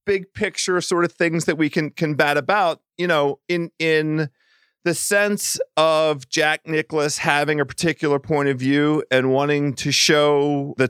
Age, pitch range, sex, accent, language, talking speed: 40-59, 140-175 Hz, male, American, English, 170 wpm